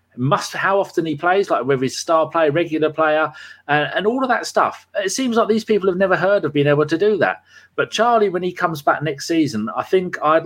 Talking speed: 250 wpm